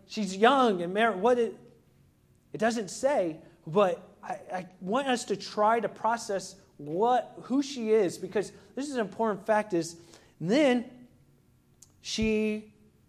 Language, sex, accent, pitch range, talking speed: English, male, American, 180-225 Hz, 140 wpm